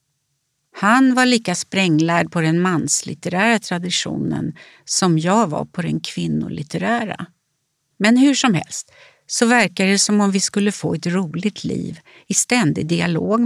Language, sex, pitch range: Swedish, female, 165-220 Hz